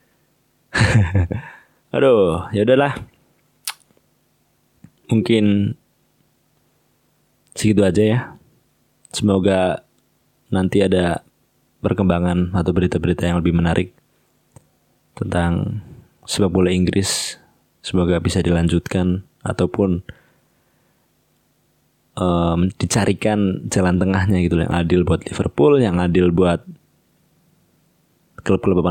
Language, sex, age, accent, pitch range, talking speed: Indonesian, male, 20-39, native, 90-105 Hz, 75 wpm